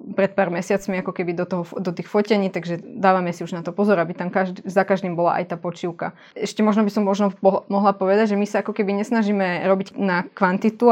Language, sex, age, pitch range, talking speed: Slovak, female, 20-39, 185-210 Hz, 235 wpm